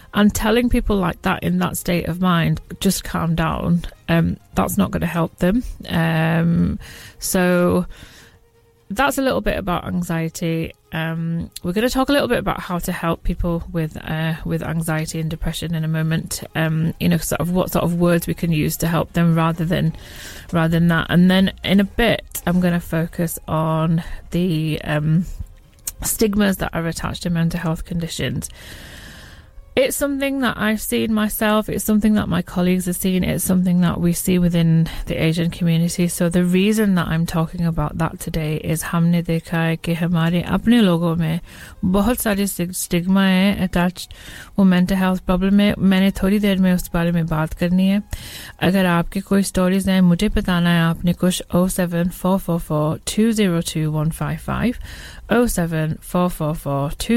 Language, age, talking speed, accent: English, 30-49, 160 wpm, British